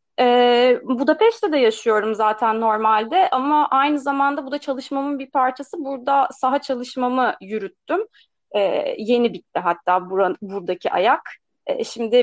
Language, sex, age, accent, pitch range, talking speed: Turkish, female, 30-49, native, 225-280 Hz, 130 wpm